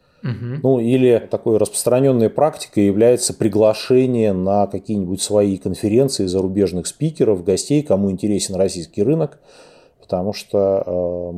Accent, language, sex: native, Russian, male